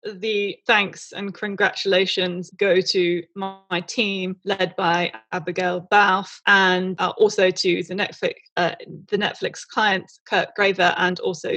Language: English